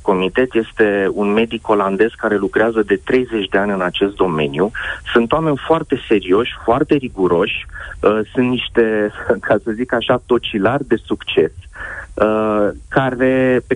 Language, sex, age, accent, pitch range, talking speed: Romanian, male, 30-49, native, 105-135 Hz, 130 wpm